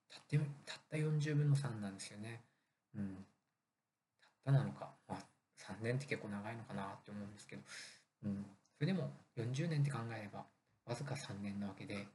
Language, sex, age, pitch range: Japanese, male, 20-39, 105-140 Hz